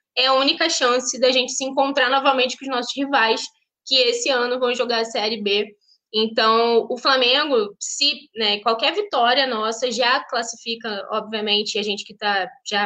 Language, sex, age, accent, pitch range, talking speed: Portuguese, female, 10-29, Brazilian, 225-285 Hz, 175 wpm